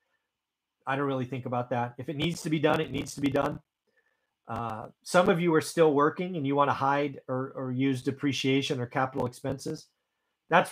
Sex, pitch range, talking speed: male, 115-160 Hz, 205 wpm